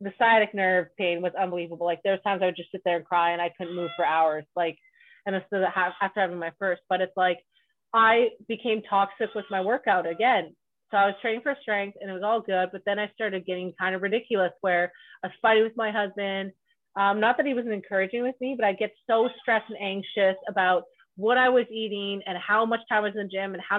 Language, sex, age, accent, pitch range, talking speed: English, female, 30-49, American, 195-245 Hz, 245 wpm